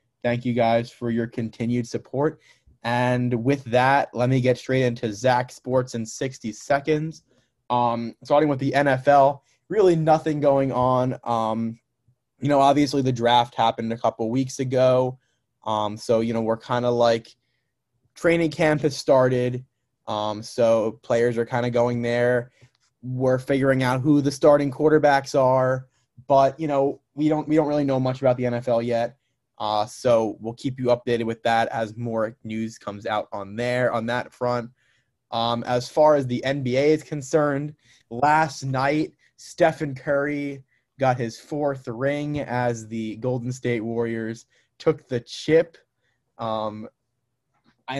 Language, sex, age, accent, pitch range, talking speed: English, male, 20-39, American, 115-135 Hz, 160 wpm